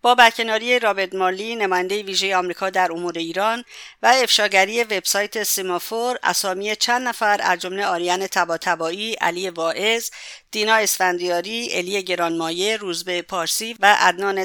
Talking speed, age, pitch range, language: 130 wpm, 50-69, 180-230 Hz, English